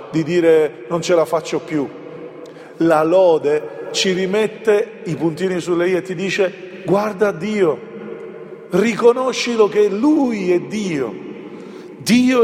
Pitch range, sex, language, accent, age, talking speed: 175-230 Hz, male, Italian, native, 40-59, 125 wpm